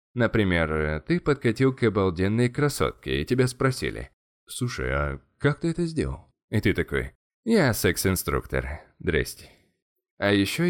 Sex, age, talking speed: male, 20-39, 130 wpm